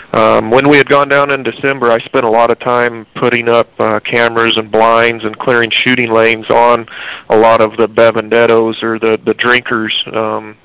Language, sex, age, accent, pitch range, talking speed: English, male, 40-59, American, 115-125 Hz, 195 wpm